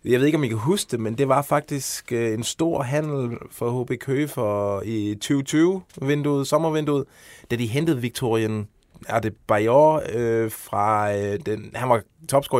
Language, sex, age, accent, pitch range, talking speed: Danish, male, 20-39, native, 105-130 Hz, 160 wpm